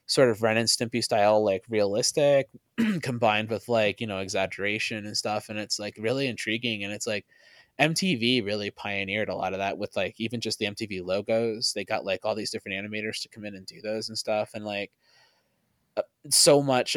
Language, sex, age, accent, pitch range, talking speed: English, male, 20-39, American, 100-125 Hz, 200 wpm